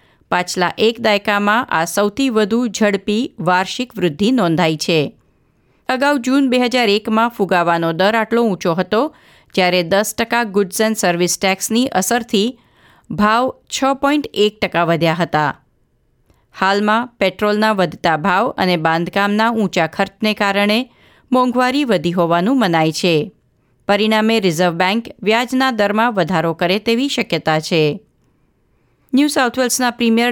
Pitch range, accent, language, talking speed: 180-240 Hz, native, Gujarati, 115 wpm